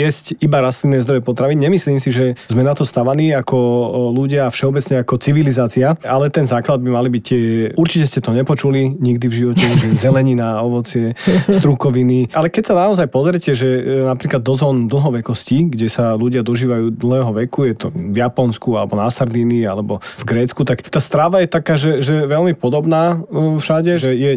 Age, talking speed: 30-49, 180 wpm